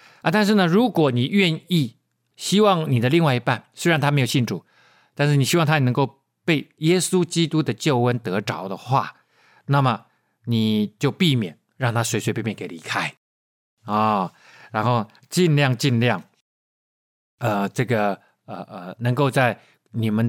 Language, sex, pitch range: Chinese, male, 115-160 Hz